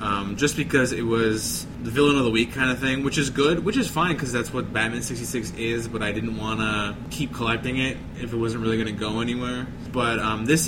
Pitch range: 110-130 Hz